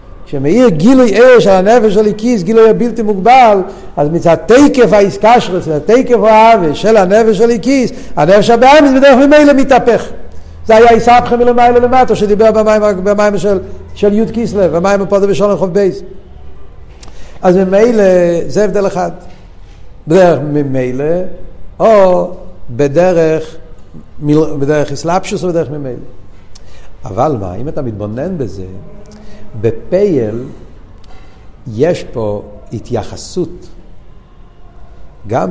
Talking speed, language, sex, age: 110 wpm, Hebrew, male, 50-69